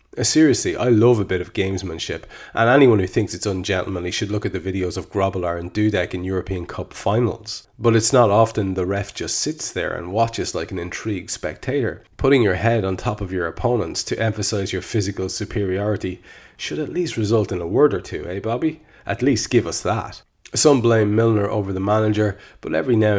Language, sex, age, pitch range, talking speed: English, male, 30-49, 95-115 Hz, 205 wpm